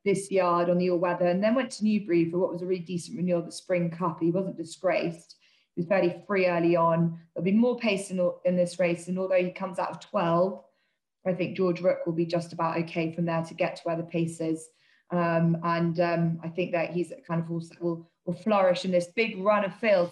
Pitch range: 175-205 Hz